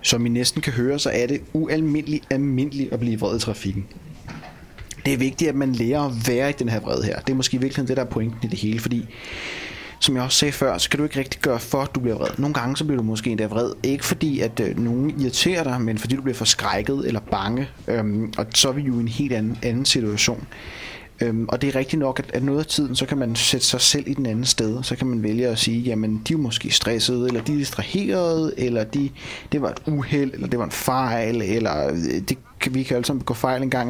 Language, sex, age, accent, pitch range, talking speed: Danish, male, 30-49, native, 115-140 Hz, 255 wpm